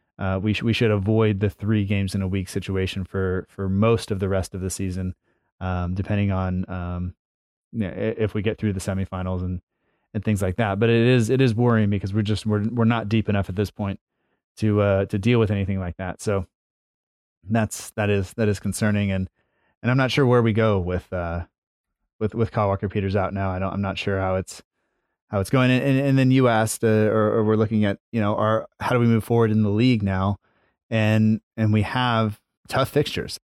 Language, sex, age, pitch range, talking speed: English, male, 20-39, 100-110 Hz, 225 wpm